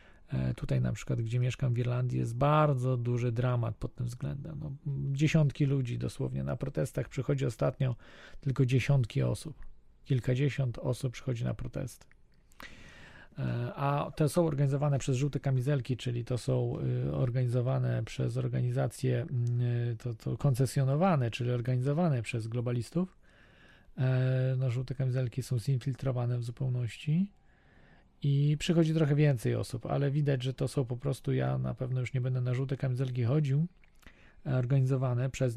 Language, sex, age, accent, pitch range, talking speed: Polish, male, 40-59, native, 125-145 Hz, 135 wpm